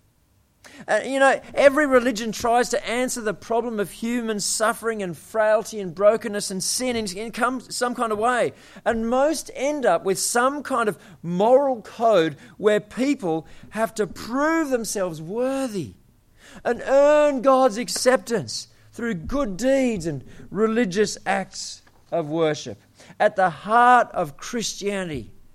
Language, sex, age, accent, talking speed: English, male, 40-59, Australian, 135 wpm